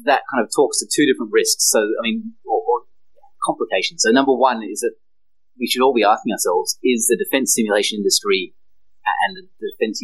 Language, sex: English, male